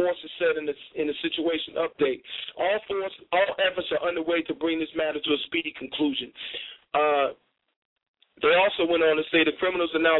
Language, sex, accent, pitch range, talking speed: English, male, American, 140-175 Hz, 195 wpm